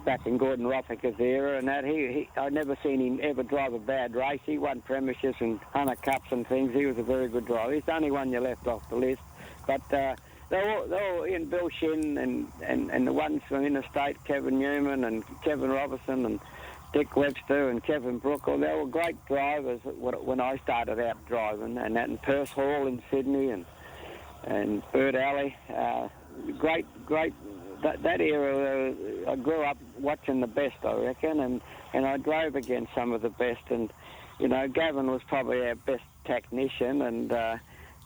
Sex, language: male, English